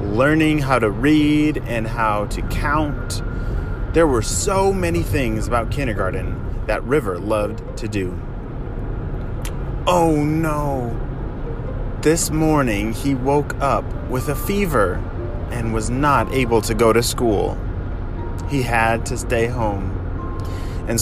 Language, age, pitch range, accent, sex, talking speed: English, 30-49, 95-120 Hz, American, male, 125 wpm